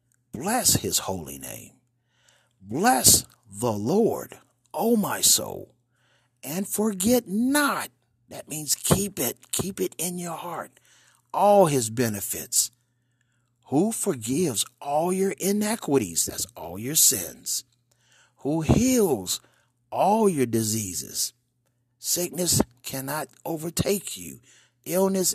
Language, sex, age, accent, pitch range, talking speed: English, male, 50-69, American, 120-195 Hz, 105 wpm